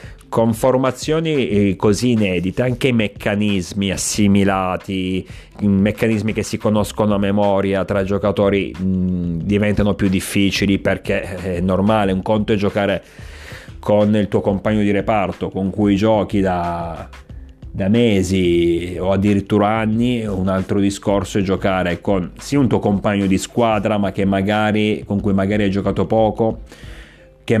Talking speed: 140 wpm